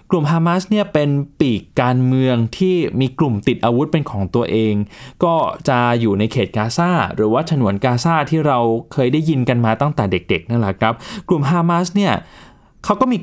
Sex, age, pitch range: male, 20-39, 115-160 Hz